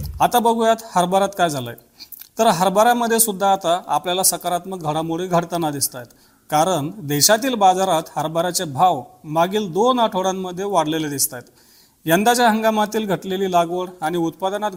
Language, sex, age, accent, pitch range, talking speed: Marathi, male, 40-59, native, 165-205 Hz, 125 wpm